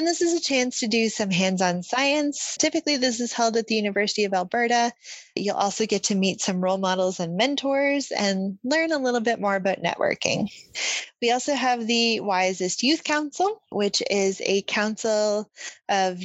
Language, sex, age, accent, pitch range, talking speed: English, female, 20-39, American, 185-245 Hz, 180 wpm